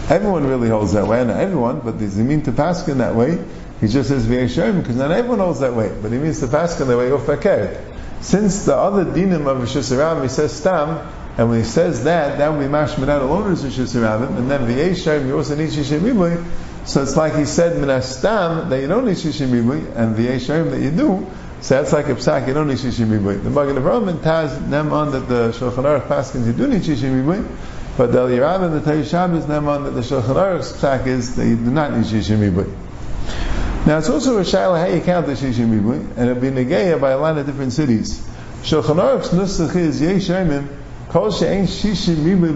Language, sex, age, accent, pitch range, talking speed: English, male, 50-69, American, 120-165 Hz, 220 wpm